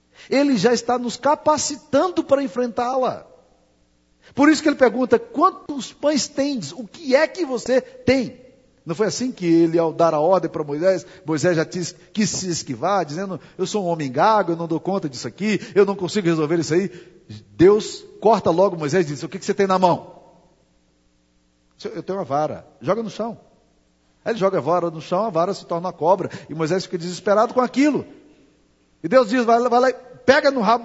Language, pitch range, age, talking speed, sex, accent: Portuguese, 170-255 Hz, 50-69, 200 wpm, male, Brazilian